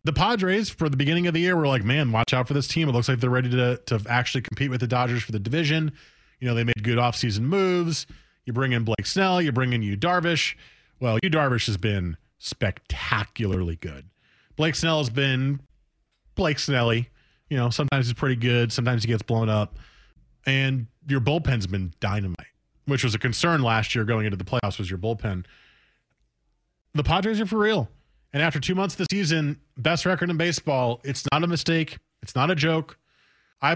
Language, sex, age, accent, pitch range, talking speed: English, male, 30-49, American, 115-155 Hz, 205 wpm